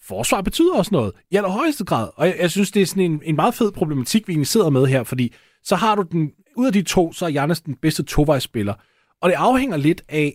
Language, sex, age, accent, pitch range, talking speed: Danish, male, 30-49, native, 120-165 Hz, 255 wpm